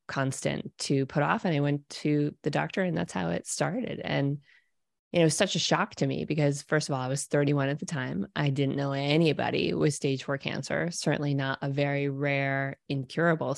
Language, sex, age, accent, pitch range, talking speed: English, female, 20-39, American, 140-165 Hz, 210 wpm